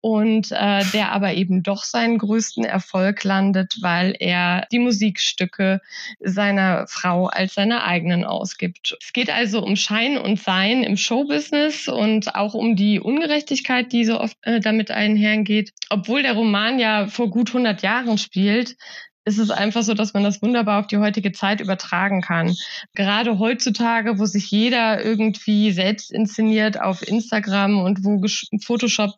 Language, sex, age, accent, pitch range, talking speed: German, female, 20-39, German, 195-225 Hz, 160 wpm